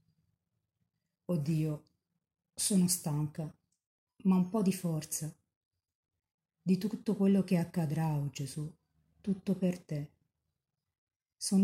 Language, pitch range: Italian, 145-180 Hz